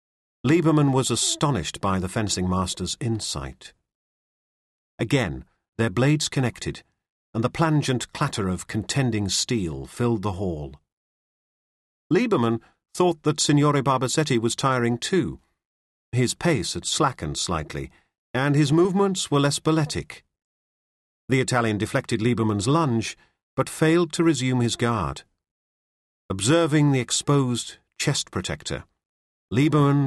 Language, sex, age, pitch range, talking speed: English, male, 50-69, 95-145 Hz, 110 wpm